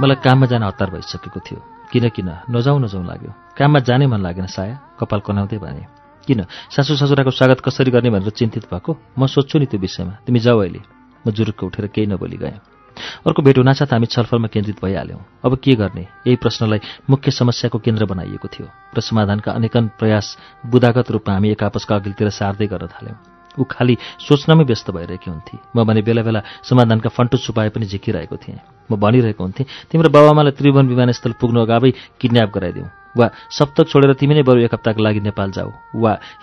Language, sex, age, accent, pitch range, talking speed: English, male, 40-59, Indian, 105-130 Hz, 130 wpm